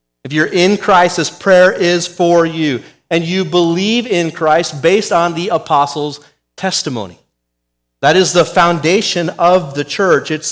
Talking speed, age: 155 wpm, 30-49